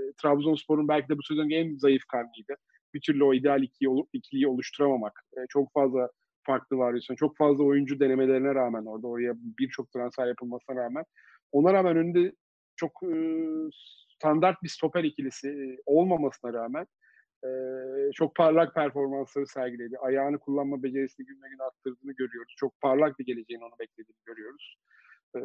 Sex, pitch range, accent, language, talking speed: male, 130-160 Hz, native, Turkish, 135 wpm